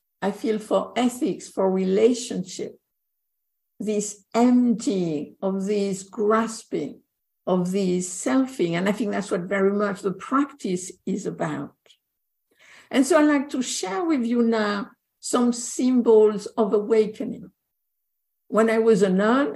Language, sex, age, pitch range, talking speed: English, female, 60-79, 205-260 Hz, 130 wpm